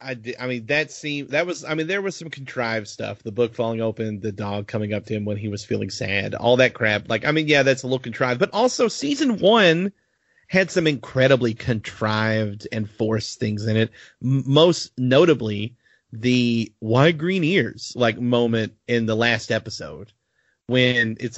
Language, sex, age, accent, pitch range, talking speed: English, male, 30-49, American, 115-140 Hz, 190 wpm